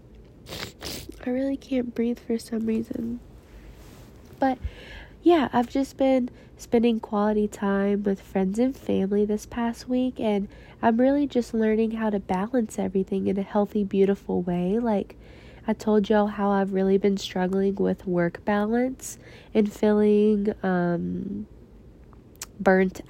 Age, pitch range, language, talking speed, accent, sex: 20-39, 190-225 Hz, English, 135 wpm, American, female